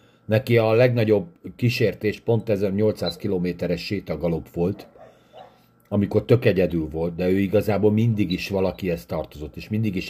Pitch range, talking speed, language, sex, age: 100-115 Hz, 145 wpm, Hungarian, male, 50-69